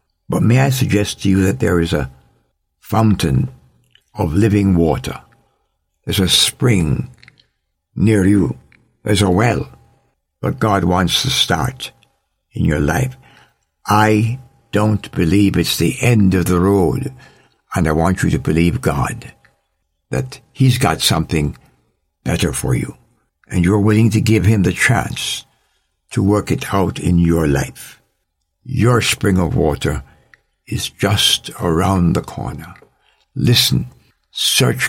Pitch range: 85-115 Hz